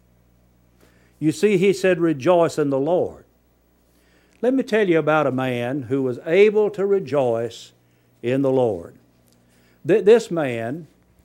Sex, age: male, 60-79